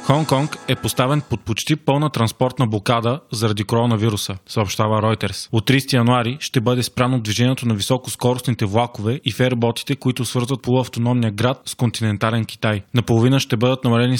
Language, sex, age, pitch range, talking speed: Bulgarian, male, 20-39, 115-130 Hz, 150 wpm